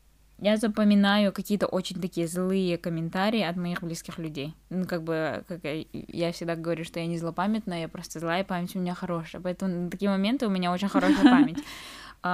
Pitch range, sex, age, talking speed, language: 175-200 Hz, female, 10-29, 195 wpm, Russian